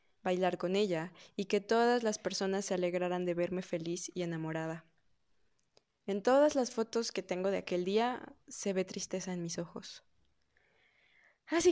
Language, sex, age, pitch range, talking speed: Spanish, female, 20-39, 175-220 Hz, 160 wpm